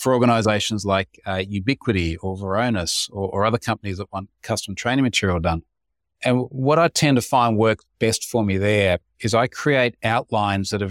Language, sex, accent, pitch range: English, male, Australian, 100-125 Hz